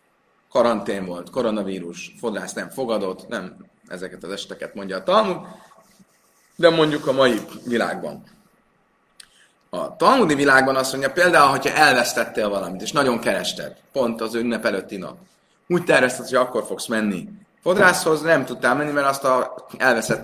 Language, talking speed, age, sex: Hungarian, 145 wpm, 30-49, male